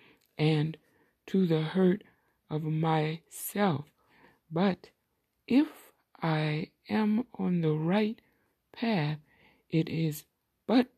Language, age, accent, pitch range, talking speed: English, 60-79, American, 170-220 Hz, 95 wpm